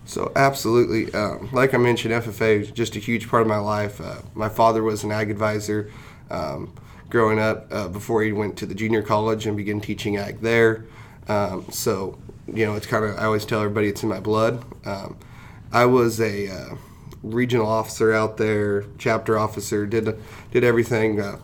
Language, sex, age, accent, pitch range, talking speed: English, male, 30-49, American, 105-115 Hz, 190 wpm